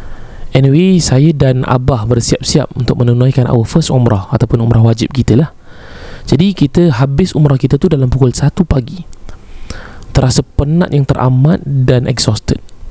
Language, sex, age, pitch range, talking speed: Malay, male, 20-39, 115-145 Hz, 145 wpm